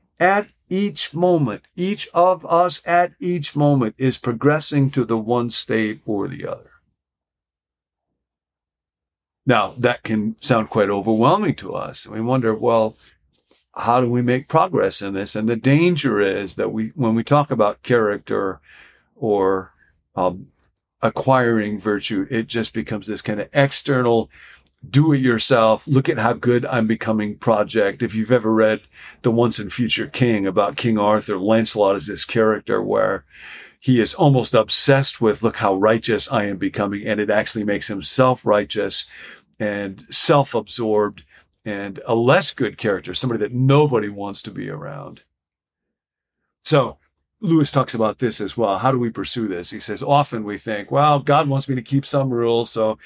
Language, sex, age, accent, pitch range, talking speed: English, male, 50-69, American, 105-140 Hz, 150 wpm